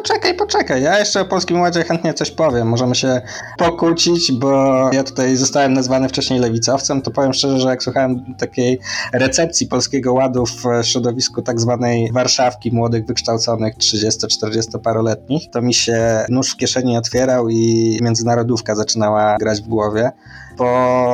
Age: 20-39